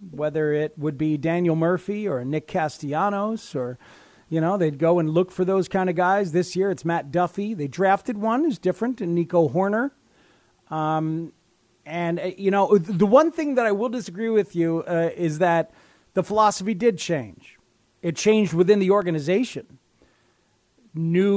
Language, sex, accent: English, male, American